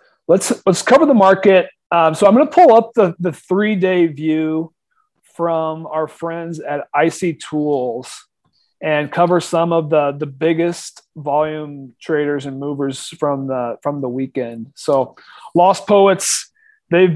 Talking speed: 150 wpm